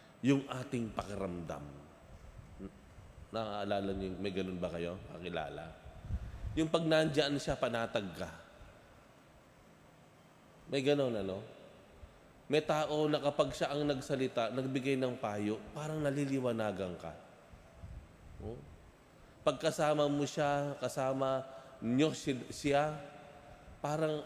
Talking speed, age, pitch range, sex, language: 85 wpm, 20-39, 105-150 Hz, male, Filipino